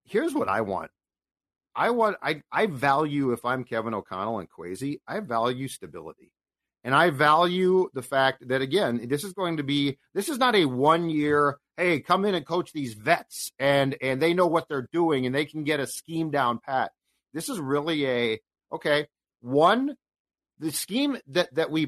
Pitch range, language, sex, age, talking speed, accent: 135-180 Hz, English, male, 40-59, 185 wpm, American